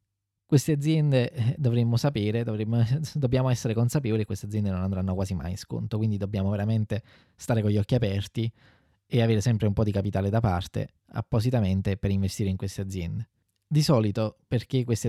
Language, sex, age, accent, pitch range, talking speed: Italian, male, 20-39, native, 100-120 Hz, 175 wpm